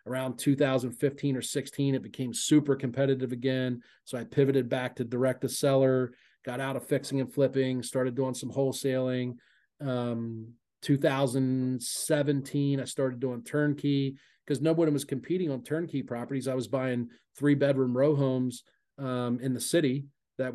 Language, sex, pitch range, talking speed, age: English, male, 125-140 Hz, 150 wpm, 40-59